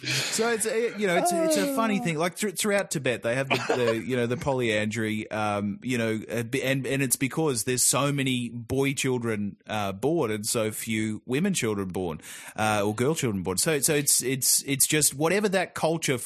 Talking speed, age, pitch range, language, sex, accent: 200 wpm, 30-49, 115-145 Hz, English, male, Australian